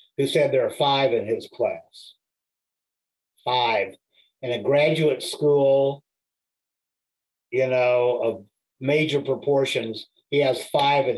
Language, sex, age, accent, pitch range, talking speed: English, male, 50-69, American, 135-170 Hz, 120 wpm